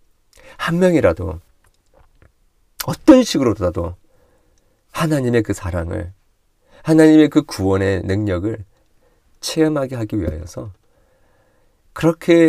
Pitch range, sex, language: 85-115 Hz, male, Korean